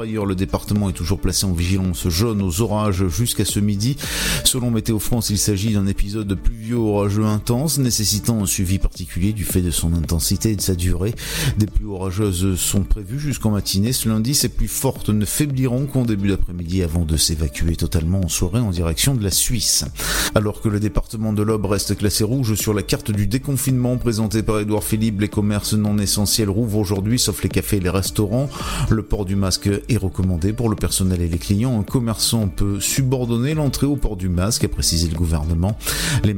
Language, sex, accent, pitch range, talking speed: French, male, French, 95-115 Hz, 205 wpm